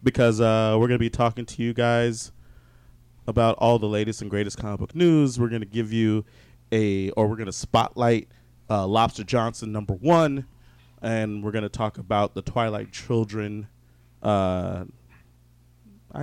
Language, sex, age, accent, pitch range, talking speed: English, male, 30-49, American, 105-120 Hz, 165 wpm